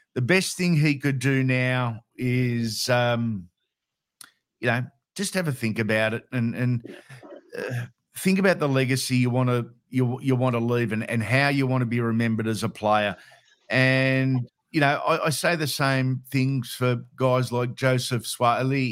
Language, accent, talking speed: English, Australian, 180 wpm